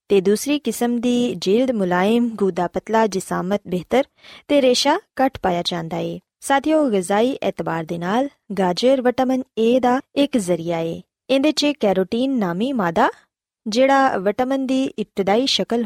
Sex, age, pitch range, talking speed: female, 20-39, 185-260 Hz, 140 wpm